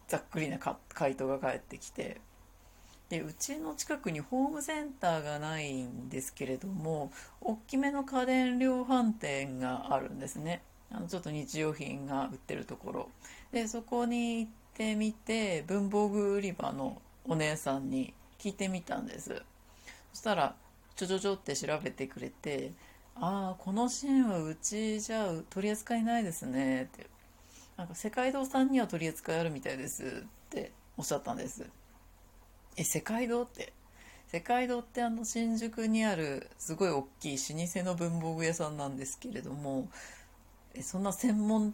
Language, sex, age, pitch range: Japanese, female, 40-59, 135-230 Hz